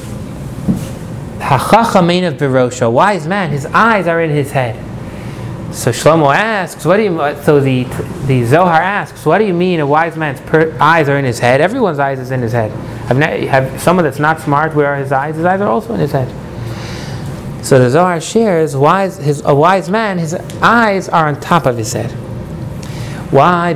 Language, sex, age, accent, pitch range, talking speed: English, male, 30-49, American, 130-175 Hz, 190 wpm